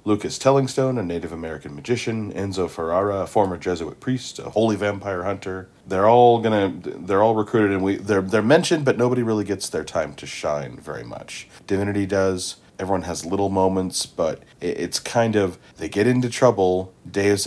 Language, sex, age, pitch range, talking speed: English, male, 40-59, 85-100 Hz, 180 wpm